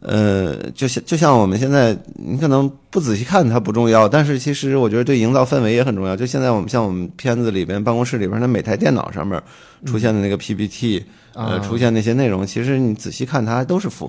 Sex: male